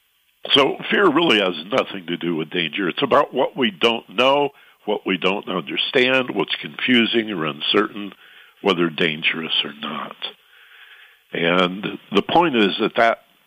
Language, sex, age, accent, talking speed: English, male, 60-79, American, 145 wpm